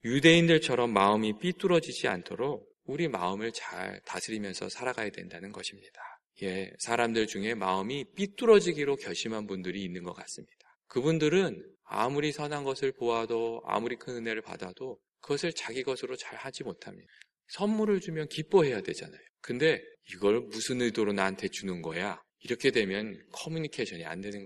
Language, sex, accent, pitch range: Korean, male, native, 105-155 Hz